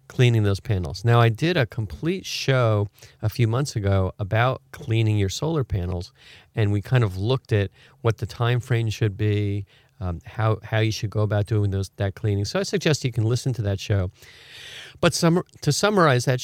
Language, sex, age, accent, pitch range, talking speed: English, male, 40-59, American, 100-130 Hz, 200 wpm